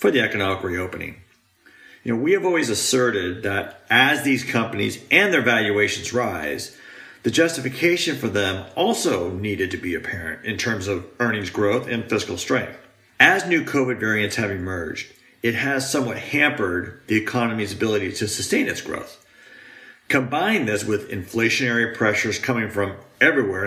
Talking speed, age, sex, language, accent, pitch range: 145 wpm, 40-59, male, English, American, 105-125 Hz